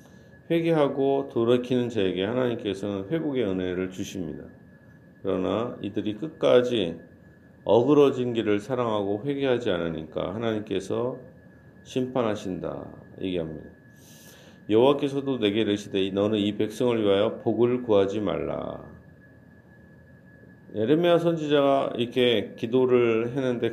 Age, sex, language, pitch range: 40-59, male, Korean, 100-125 Hz